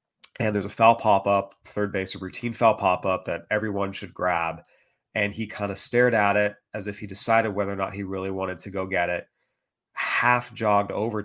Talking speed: 210 wpm